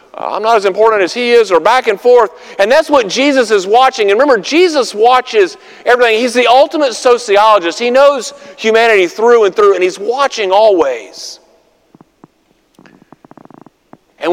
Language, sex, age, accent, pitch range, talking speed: English, male, 50-69, American, 205-285 Hz, 155 wpm